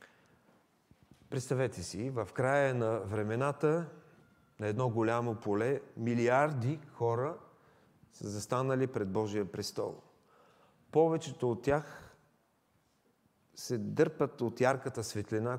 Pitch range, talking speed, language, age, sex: 115-150 Hz, 95 wpm, English, 40-59, male